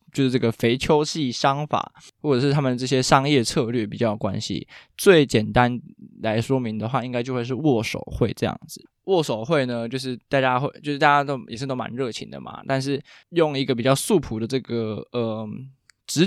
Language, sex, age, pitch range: Chinese, male, 20-39, 115-135 Hz